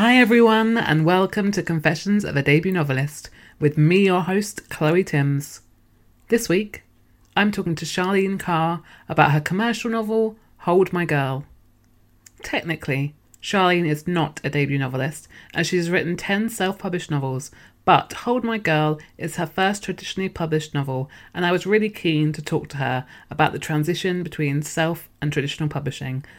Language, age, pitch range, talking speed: English, 30-49, 135-180 Hz, 160 wpm